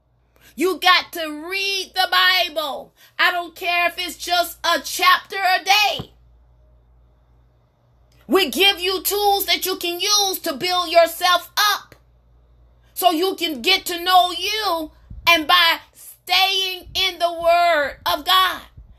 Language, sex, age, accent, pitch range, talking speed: English, female, 30-49, American, 305-360 Hz, 135 wpm